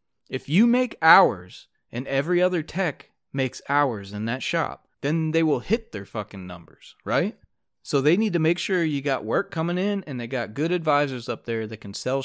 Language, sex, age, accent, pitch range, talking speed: English, male, 30-49, American, 110-145 Hz, 205 wpm